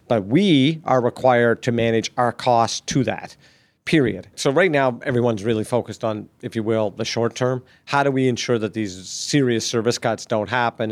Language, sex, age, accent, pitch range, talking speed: English, male, 40-59, American, 115-135 Hz, 190 wpm